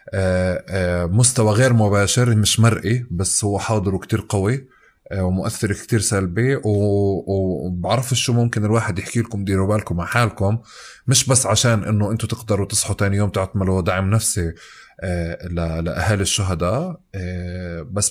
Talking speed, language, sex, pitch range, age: 125 wpm, Arabic, male, 90-110 Hz, 20-39